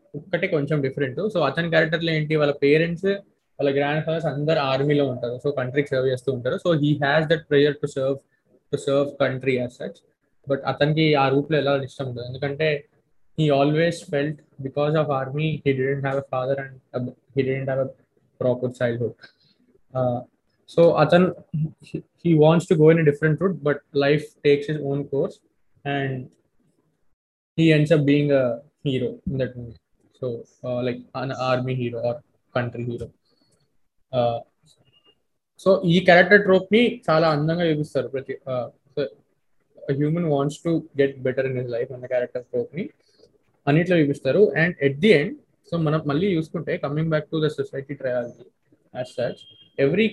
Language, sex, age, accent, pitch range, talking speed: Telugu, male, 20-39, native, 130-155 Hz, 145 wpm